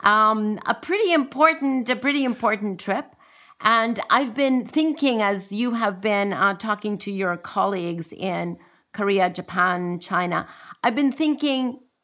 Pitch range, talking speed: 165-225 Hz, 140 wpm